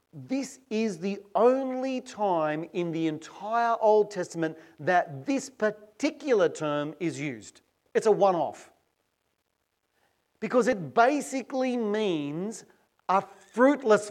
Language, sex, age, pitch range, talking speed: English, male, 40-59, 150-220 Hz, 105 wpm